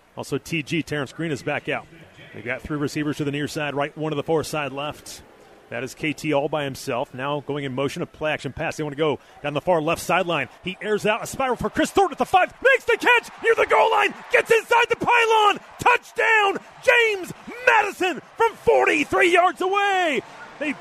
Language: English